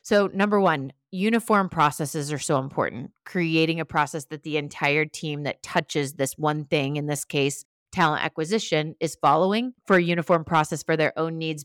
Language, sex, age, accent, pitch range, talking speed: English, female, 30-49, American, 150-175 Hz, 180 wpm